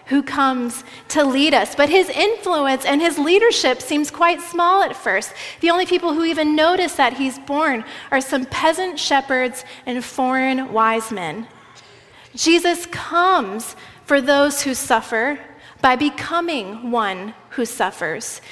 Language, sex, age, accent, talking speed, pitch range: English, female, 30-49, American, 145 wpm, 265-330 Hz